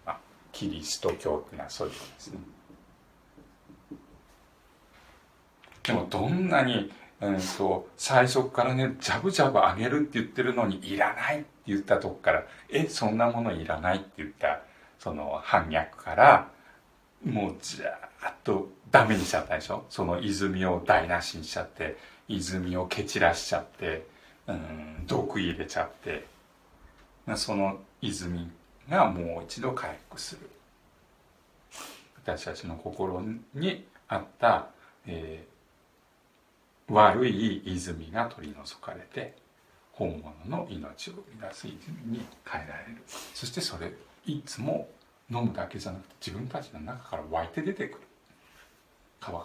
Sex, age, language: male, 60-79, Japanese